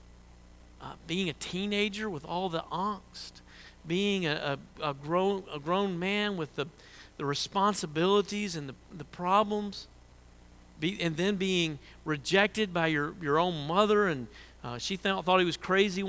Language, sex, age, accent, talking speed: English, male, 50-69, American, 155 wpm